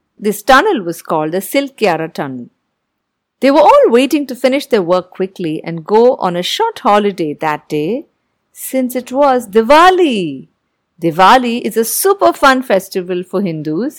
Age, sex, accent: 50-69, female, Indian